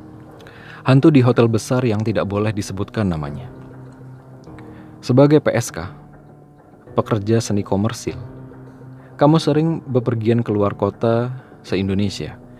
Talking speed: 95 wpm